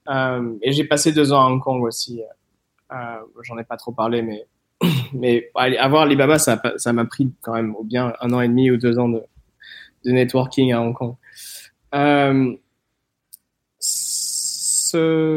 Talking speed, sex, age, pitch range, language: 165 wpm, male, 20-39, 120-150 Hz, French